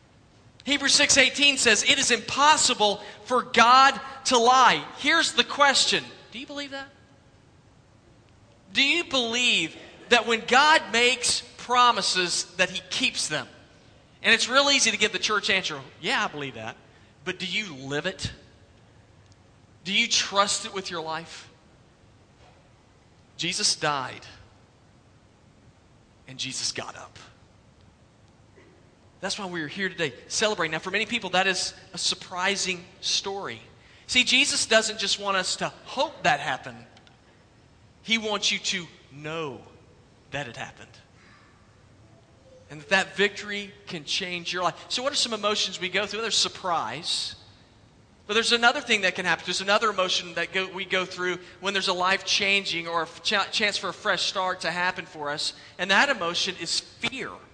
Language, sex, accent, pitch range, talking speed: English, male, American, 135-215 Hz, 155 wpm